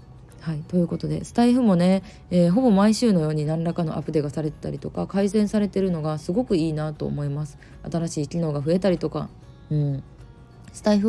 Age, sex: 20-39, female